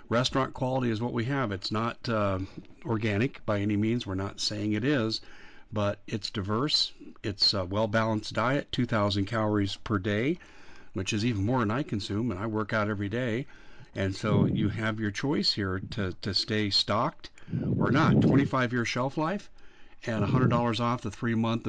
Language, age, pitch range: English, 50-69, 100-125 Hz